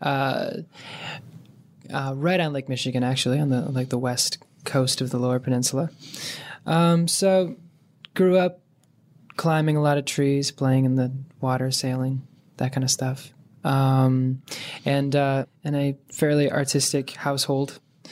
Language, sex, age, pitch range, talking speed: English, male, 20-39, 130-150 Hz, 140 wpm